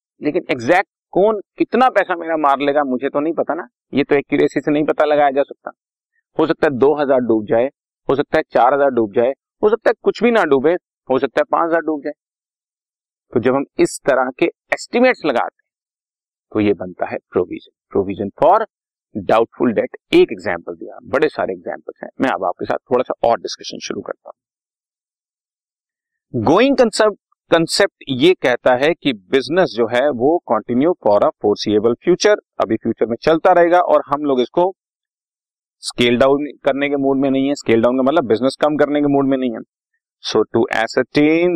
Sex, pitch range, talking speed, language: male, 130-185 Hz, 190 wpm, Hindi